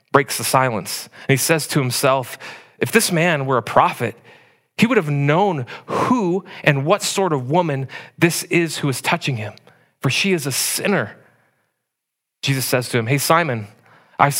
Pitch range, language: 130-165 Hz, English